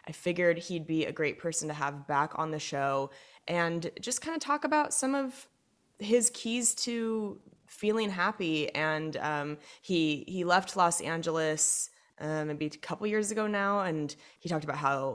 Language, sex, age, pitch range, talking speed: English, female, 20-39, 150-200 Hz, 180 wpm